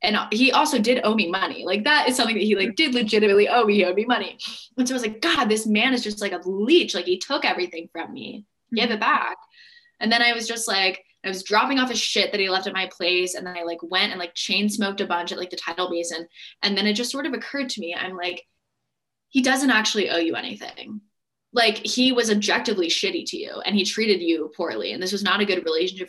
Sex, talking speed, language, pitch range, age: female, 260 wpm, English, 180-235 Hz, 10-29